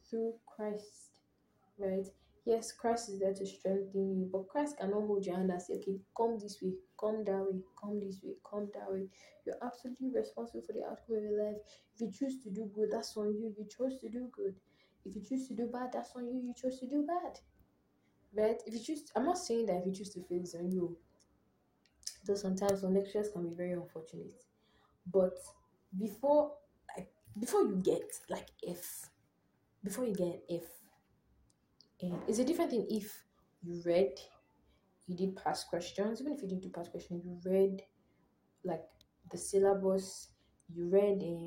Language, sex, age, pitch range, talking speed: English, female, 10-29, 175-215 Hz, 190 wpm